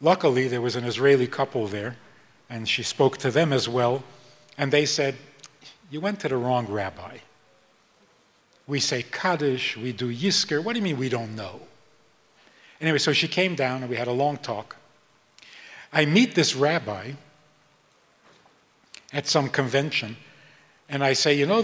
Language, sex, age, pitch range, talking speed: English, male, 50-69, 130-170 Hz, 165 wpm